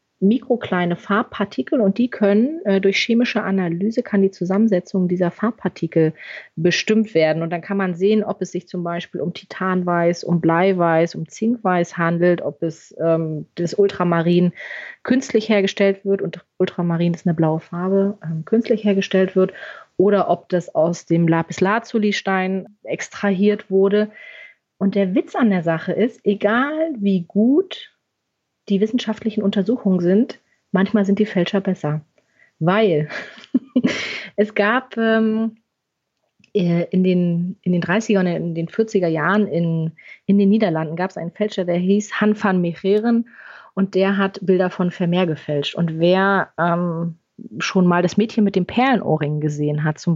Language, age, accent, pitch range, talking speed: German, 30-49, German, 170-210 Hz, 150 wpm